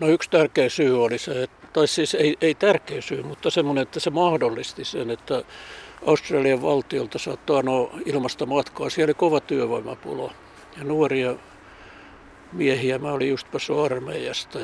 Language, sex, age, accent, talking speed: Finnish, male, 60-79, native, 150 wpm